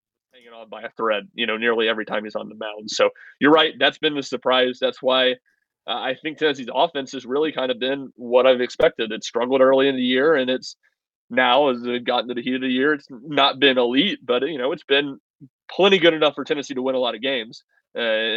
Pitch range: 120-140 Hz